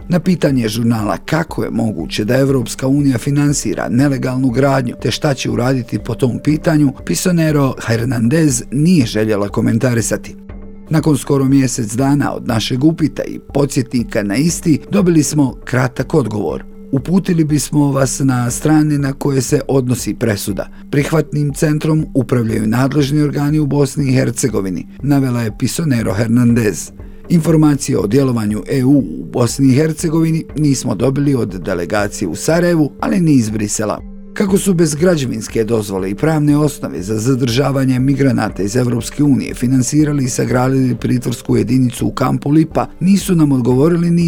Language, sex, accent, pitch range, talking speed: Croatian, male, native, 120-150 Hz, 140 wpm